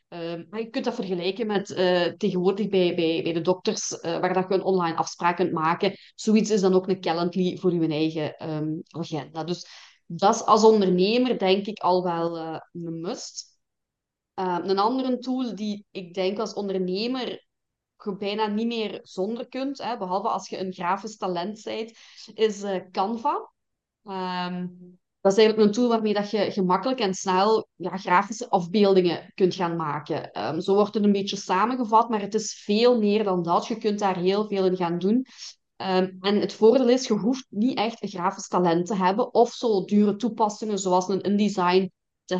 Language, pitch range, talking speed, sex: Dutch, 180-215 Hz, 190 wpm, female